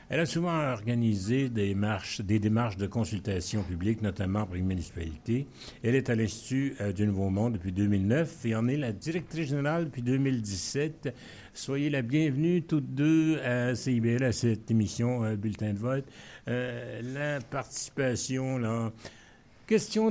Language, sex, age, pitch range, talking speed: French, male, 60-79, 100-135 Hz, 150 wpm